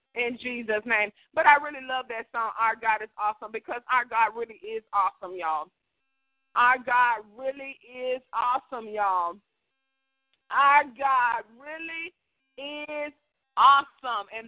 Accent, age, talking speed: American, 40-59, 135 wpm